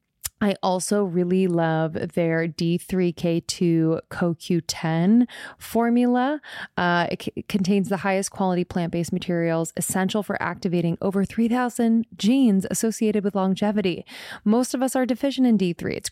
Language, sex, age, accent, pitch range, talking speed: English, female, 20-39, American, 170-215 Hz, 125 wpm